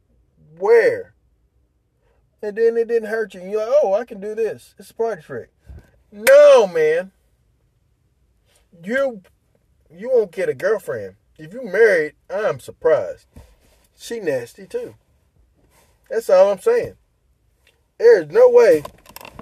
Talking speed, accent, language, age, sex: 130 wpm, American, English, 30-49, male